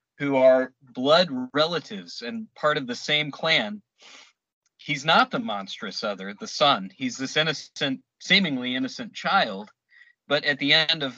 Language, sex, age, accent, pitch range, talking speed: English, male, 40-59, American, 135-220 Hz, 150 wpm